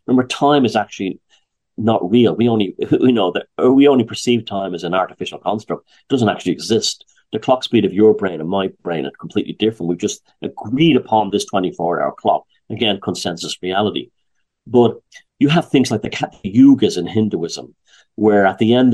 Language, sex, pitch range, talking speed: English, male, 100-120 Hz, 195 wpm